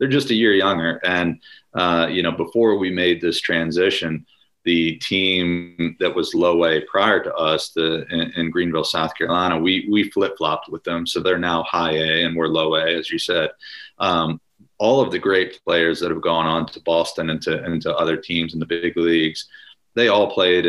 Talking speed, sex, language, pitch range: 205 wpm, male, English, 80-90 Hz